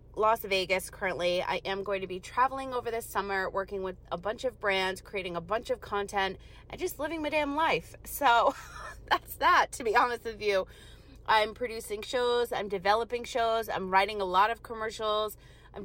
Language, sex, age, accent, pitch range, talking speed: English, female, 30-49, American, 190-240 Hz, 190 wpm